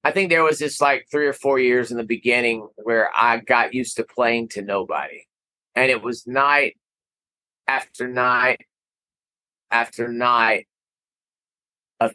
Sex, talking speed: male, 150 wpm